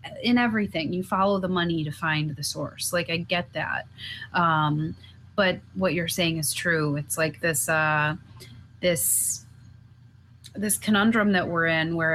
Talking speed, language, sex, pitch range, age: 160 wpm, English, female, 155-195 Hz, 30-49